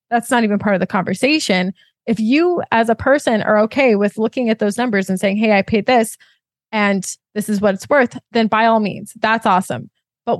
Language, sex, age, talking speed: English, female, 20-39, 220 wpm